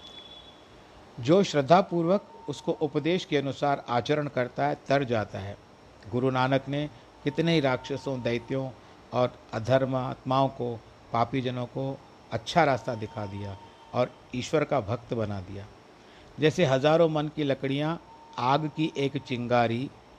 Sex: male